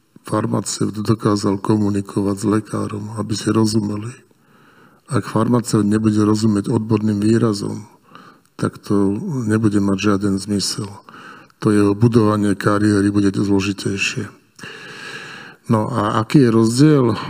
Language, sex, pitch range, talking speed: Slovak, male, 105-115 Hz, 110 wpm